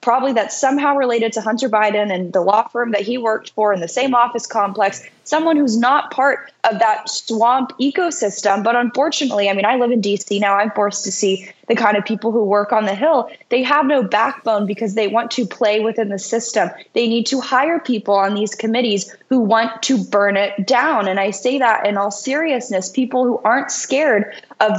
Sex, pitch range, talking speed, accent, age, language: female, 205-245 Hz, 215 wpm, American, 10-29, English